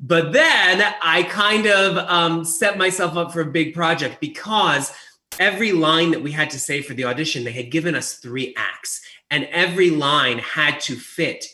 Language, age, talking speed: English, 30-49, 185 wpm